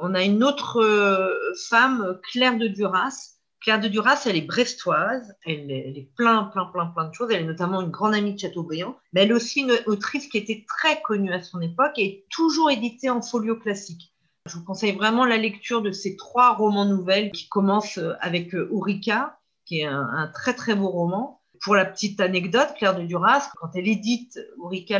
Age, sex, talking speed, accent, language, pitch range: 40-59, female, 205 wpm, French, French, 180-235 Hz